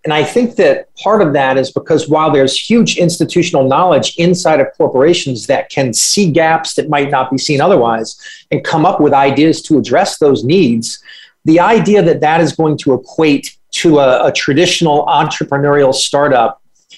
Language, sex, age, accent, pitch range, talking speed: English, male, 40-59, American, 135-175 Hz, 175 wpm